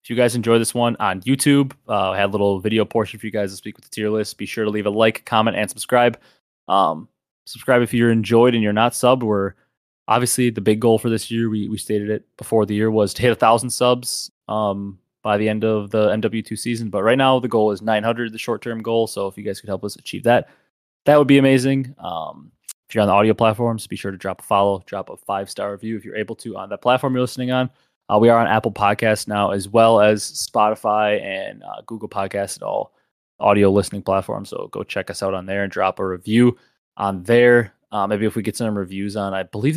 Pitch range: 100-120 Hz